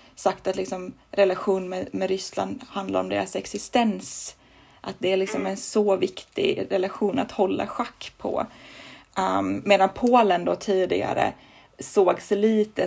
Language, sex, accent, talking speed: Swedish, female, native, 140 wpm